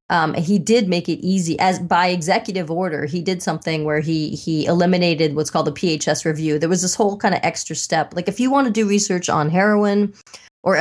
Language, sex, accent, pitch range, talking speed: English, female, American, 155-200 Hz, 220 wpm